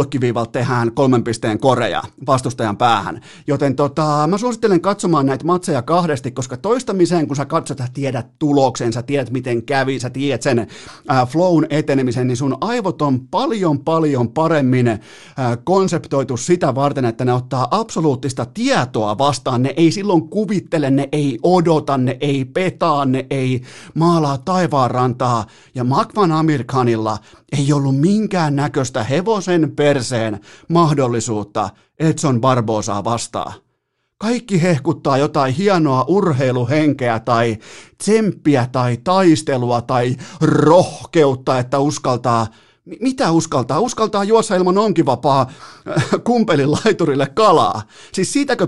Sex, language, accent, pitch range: male, Finnish, native, 125-175 Hz